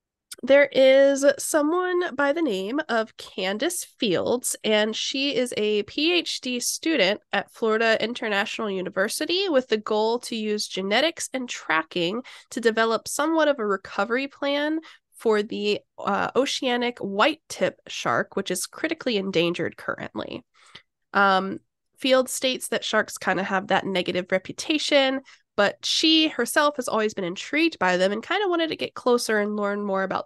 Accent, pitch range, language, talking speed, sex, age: American, 200-285 Hz, English, 155 wpm, female, 10-29